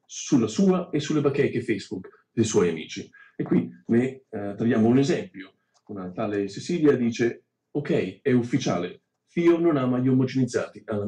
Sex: male